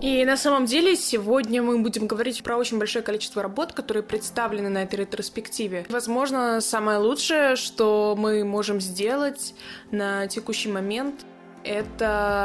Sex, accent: female, native